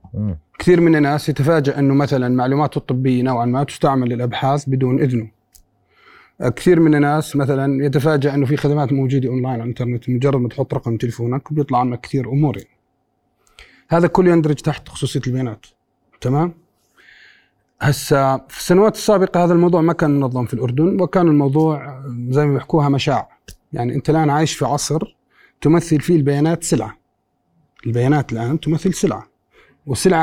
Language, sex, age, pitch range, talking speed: Arabic, male, 30-49, 125-160 Hz, 150 wpm